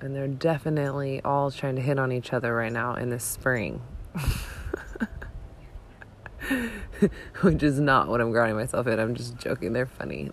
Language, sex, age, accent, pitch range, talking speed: English, female, 20-39, American, 105-130 Hz, 165 wpm